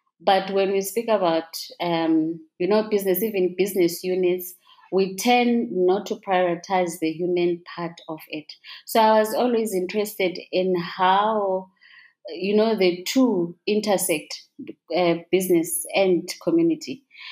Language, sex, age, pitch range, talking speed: English, female, 20-39, 175-210 Hz, 130 wpm